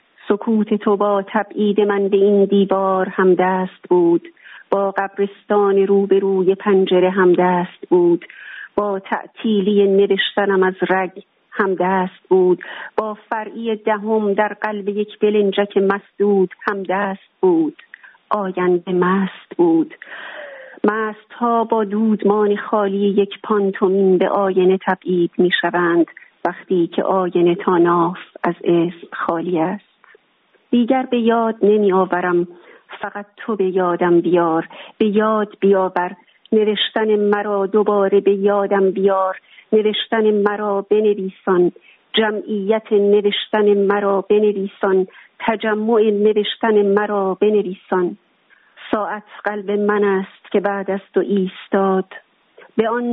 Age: 40-59